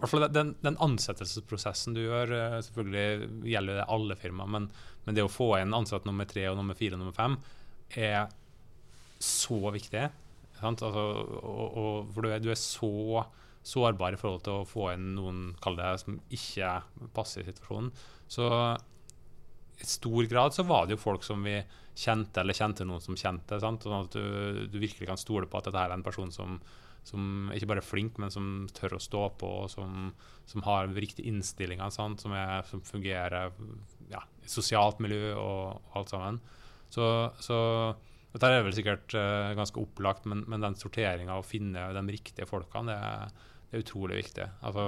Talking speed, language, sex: 185 wpm, English, male